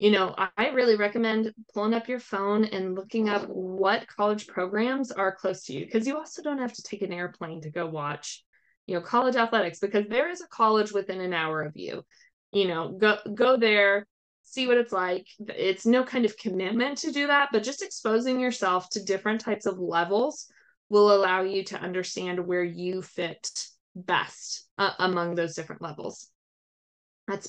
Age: 20-39